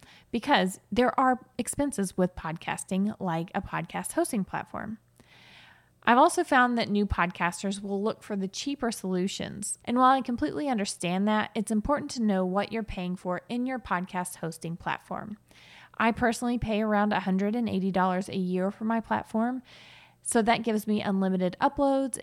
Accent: American